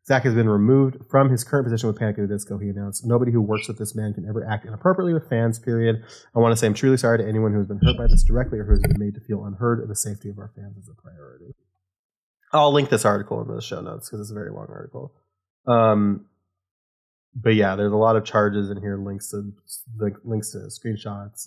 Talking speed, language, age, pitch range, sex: 245 wpm, English, 30-49, 100-120 Hz, male